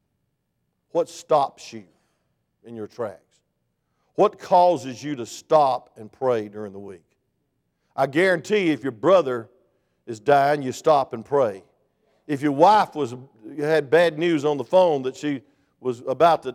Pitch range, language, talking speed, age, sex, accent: 145-205 Hz, English, 150 wpm, 50-69, male, American